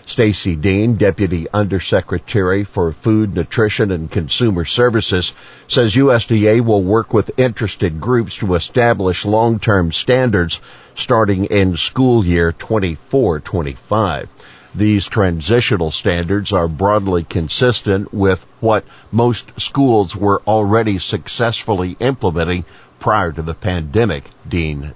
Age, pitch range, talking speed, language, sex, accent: 50-69, 90-110 Hz, 110 wpm, English, male, American